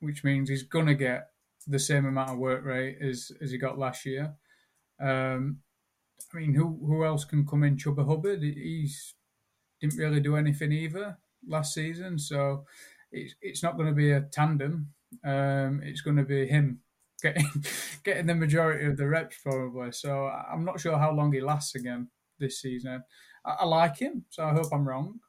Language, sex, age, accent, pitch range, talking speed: English, male, 20-39, British, 135-150 Hz, 185 wpm